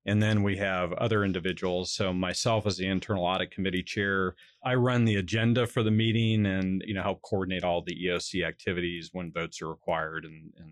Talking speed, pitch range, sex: 200 wpm, 90-105 Hz, male